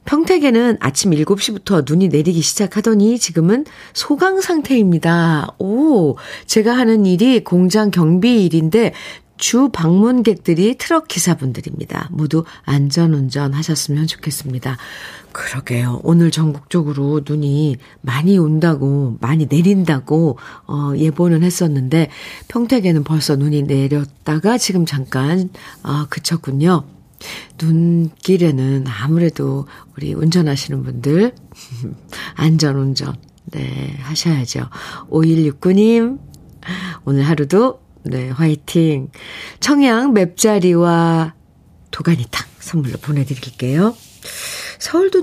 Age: 50-69